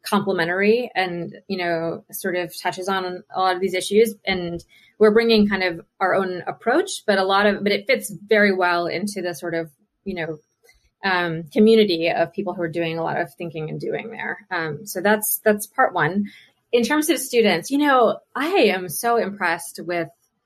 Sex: female